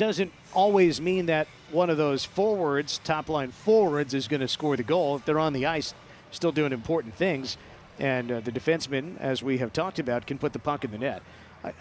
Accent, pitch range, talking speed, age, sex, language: American, 130-170 Hz, 215 wpm, 50-69, male, English